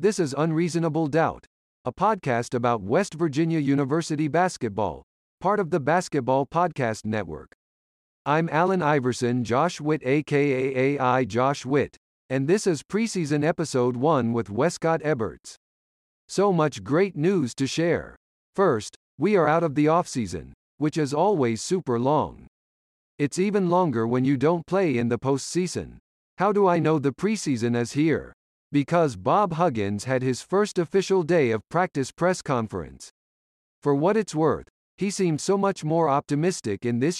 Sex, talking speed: male, 155 wpm